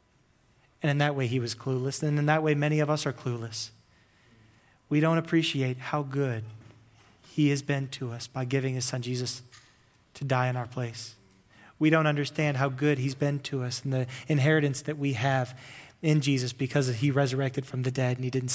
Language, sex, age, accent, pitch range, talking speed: English, male, 30-49, American, 130-155 Hz, 200 wpm